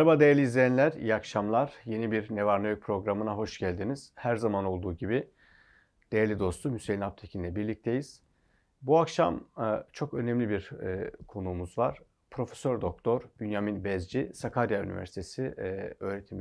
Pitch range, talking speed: 95-135 Hz, 125 wpm